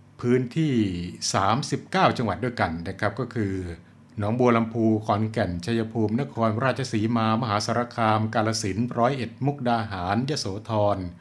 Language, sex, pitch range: Thai, male, 105-120 Hz